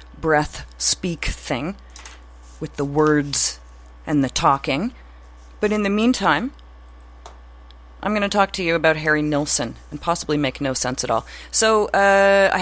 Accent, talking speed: American, 150 wpm